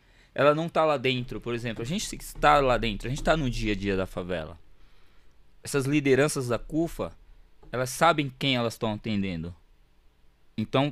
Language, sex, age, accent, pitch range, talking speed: Portuguese, male, 20-39, Brazilian, 105-150 Hz, 175 wpm